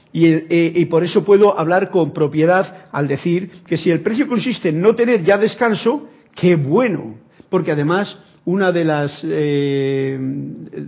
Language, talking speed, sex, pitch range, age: Spanish, 160 wpm, male, 155-205 Hz, 50-69